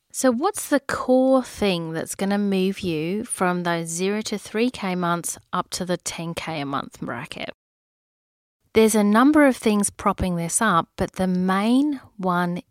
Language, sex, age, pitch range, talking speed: English, female, 30-49, 175-230 Hz, 165 wpm